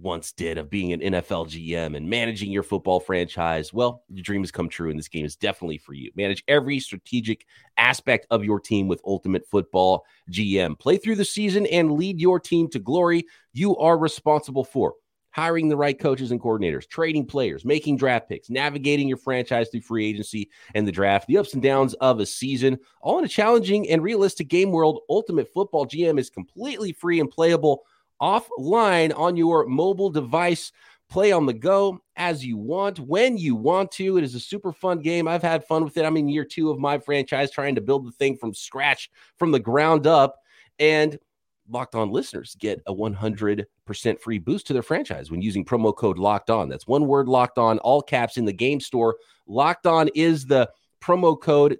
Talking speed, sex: 200 wpm, male